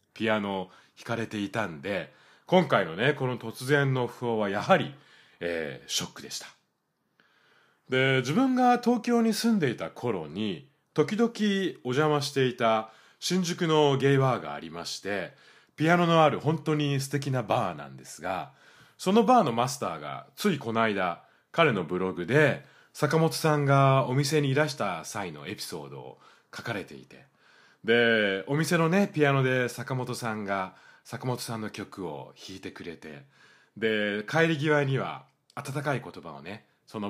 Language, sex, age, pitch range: Japanese, male, 30-49, 110-160 Hz